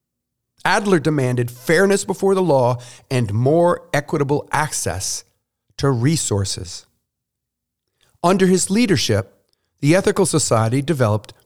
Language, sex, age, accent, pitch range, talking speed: English, male, 50-69, American, 115-155 Hz, 100 wpm